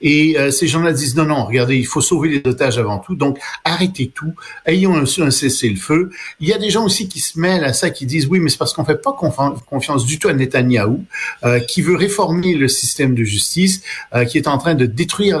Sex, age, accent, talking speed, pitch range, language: male, 50-69, French, 255 wpm, 125-160 Hz, French